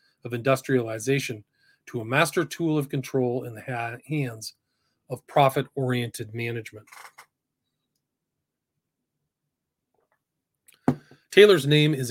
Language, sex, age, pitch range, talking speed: English, male, 40-59, 125-150 Hz, 90 wpm